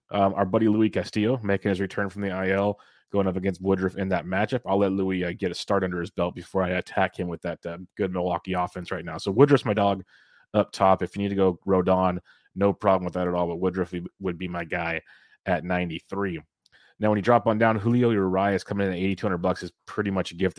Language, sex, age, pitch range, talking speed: English, male, 30-49, 95-105 Hz, 250 wpm